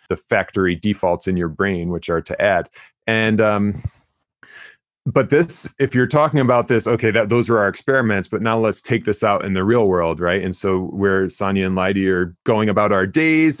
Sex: male